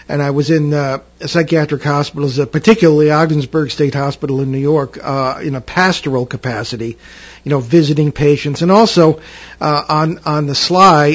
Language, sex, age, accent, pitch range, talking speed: English, male, 50-69, American, 140-175 Hz, 165 wpm